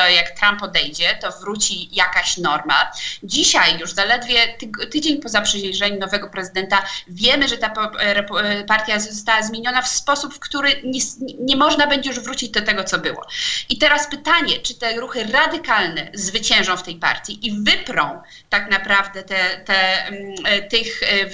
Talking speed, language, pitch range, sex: 145 wpm, Polish, 200-260 Hz, female